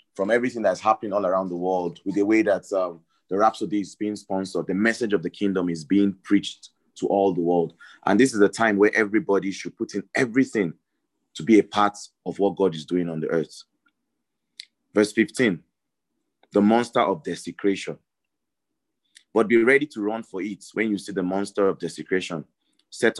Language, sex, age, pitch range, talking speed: English, male, 30-49, 95-115 Hz, 190 wpm